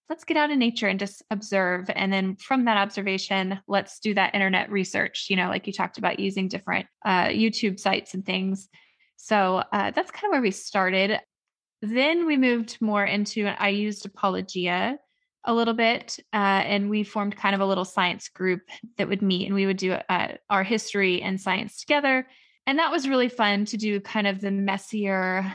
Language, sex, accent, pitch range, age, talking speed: English, female, American, 190-225 Hz, 20-39, 195 wpm